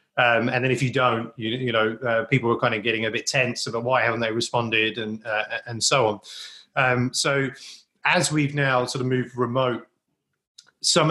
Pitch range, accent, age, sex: 120-135 Hz, British, 30-49, male